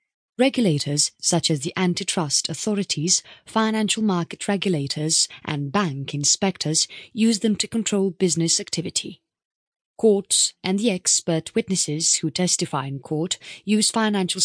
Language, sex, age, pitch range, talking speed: English, female, 30-49, 160-200 Hz, 120 wpm